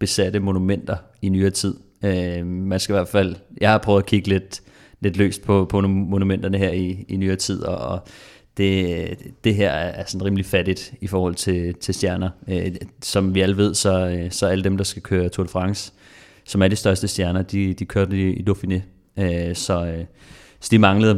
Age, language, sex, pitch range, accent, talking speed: 30-49, Danish, male, 95-105 Hz, native, 190 wpm